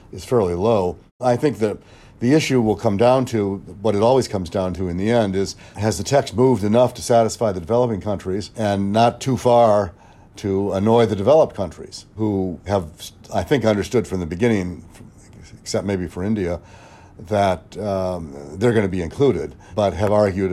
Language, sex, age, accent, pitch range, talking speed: English, male, 60-79, American, 90-115 Hz, 185 wpm